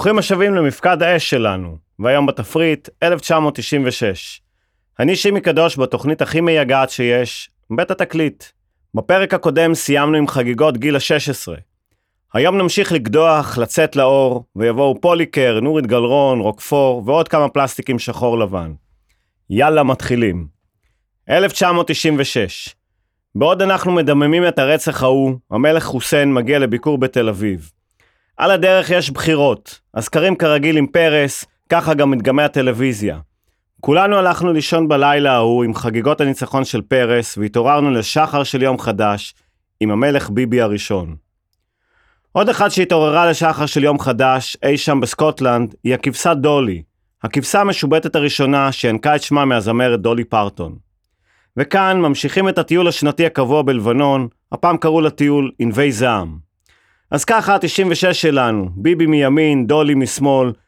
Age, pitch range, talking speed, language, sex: 30-49, 115-155 Hz, 125 wpm, Hebrew, male